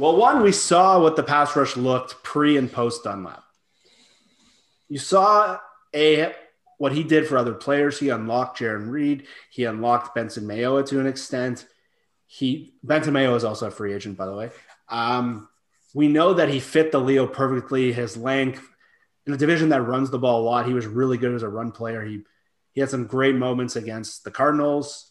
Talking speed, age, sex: 195 wpm, 30-49, male